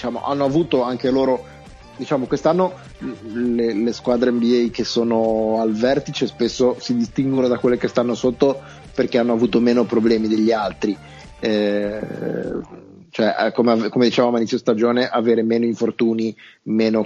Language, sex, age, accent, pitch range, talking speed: Italian, male, 30-49, native, 110-125 Hz, 145 wpm